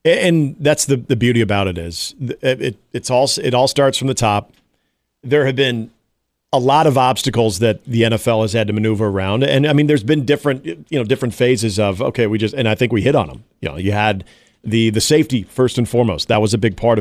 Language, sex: English, male